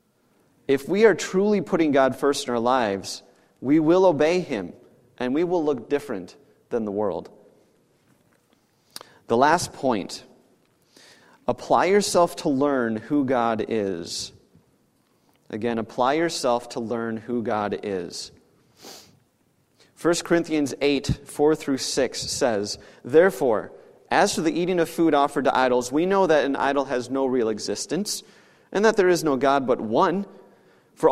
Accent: American